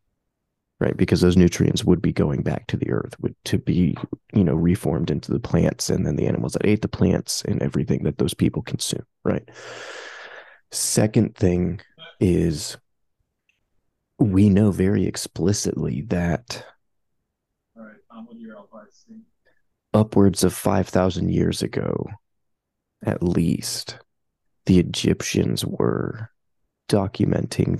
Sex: male